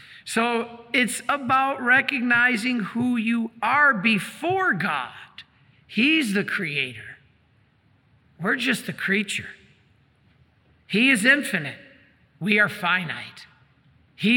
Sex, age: male, 50-69